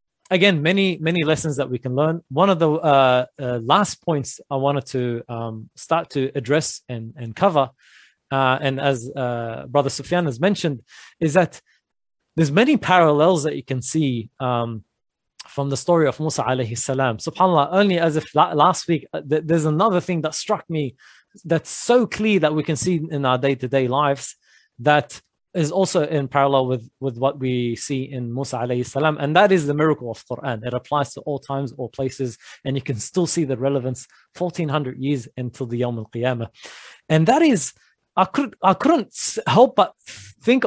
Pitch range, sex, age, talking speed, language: 130-170 Hz, male, 20-39, 185 wpm, English